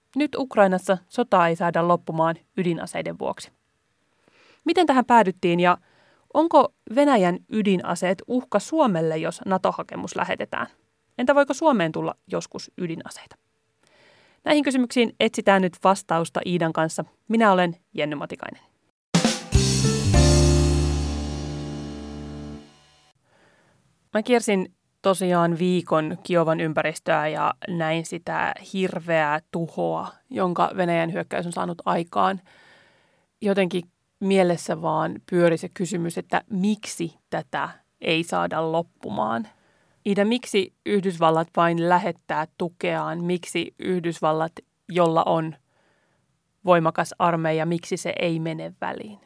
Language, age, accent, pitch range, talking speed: Finnish, 30-49, native, 160-195 Hz, 100 wpm